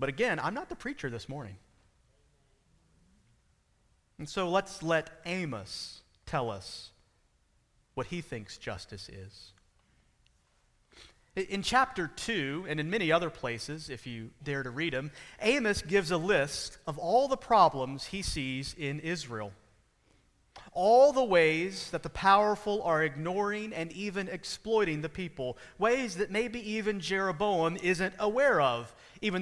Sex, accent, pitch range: male, American, 130-200 Hz